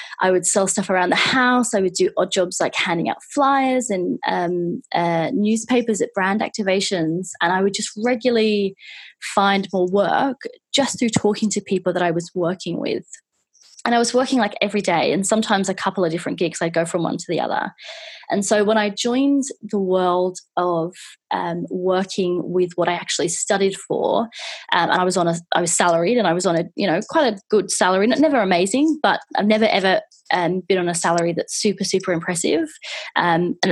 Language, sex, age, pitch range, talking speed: English, female, 20-39, 180-225 Hz, 205 wpm